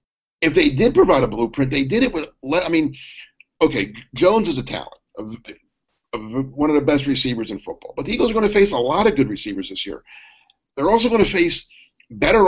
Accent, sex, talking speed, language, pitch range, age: American, male, 220 wpm, English, 135-180 Hz, 50-69